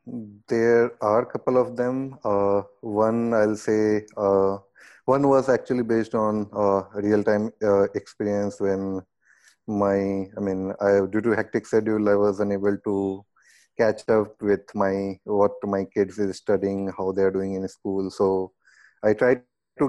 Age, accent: 30-49, Indian